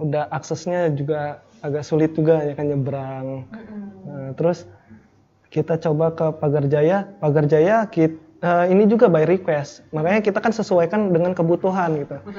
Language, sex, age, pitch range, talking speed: Indonesian, male, 20-39, 155-190 Hz, 135 wpm